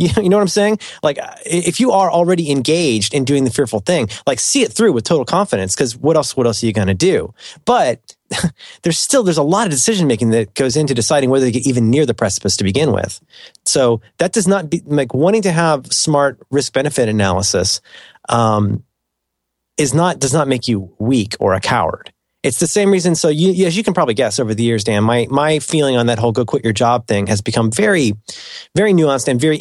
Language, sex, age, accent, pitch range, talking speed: English, male, 30-49, American, 115-170 Hz, 230 wpm